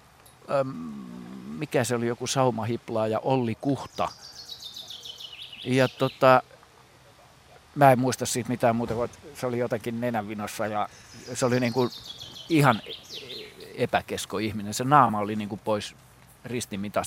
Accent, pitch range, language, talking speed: native, 110-135 Hz, Finnish, 120 wpm